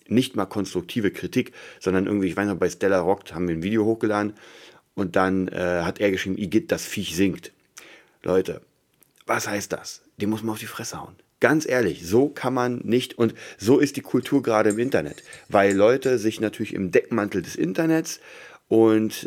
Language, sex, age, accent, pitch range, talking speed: German, male, 40-59, German, 90-110 Hz, 190 wpm